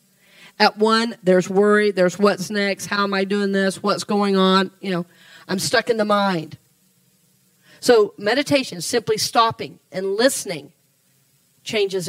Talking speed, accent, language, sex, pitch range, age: 145 wpm, American, English, female, 195-280 Hz, 40-59